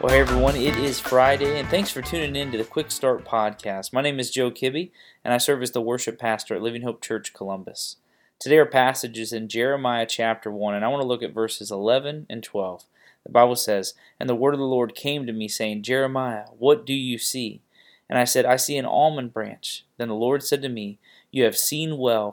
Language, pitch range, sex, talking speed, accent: English, 115-140 Hz, male, 235 wpm, American